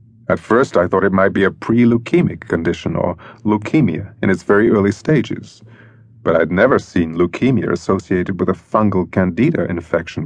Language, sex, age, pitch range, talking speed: English, male, 40-59, 95-120 Hz, 165 wpm